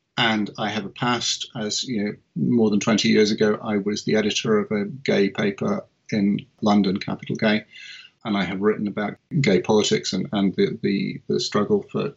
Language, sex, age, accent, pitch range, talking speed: English, male, 40-59, British, 105-125 Hz, 190 wpm